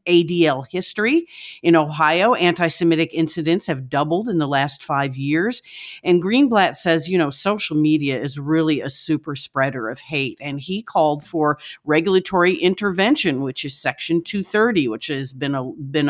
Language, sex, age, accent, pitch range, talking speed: English, female, 50-69, American, 145-185 Hz, 155 wpm